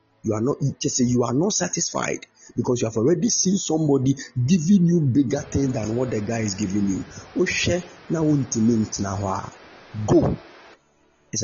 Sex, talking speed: male, 135 wpm